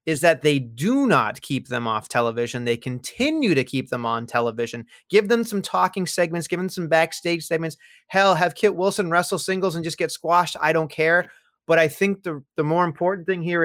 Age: 30-49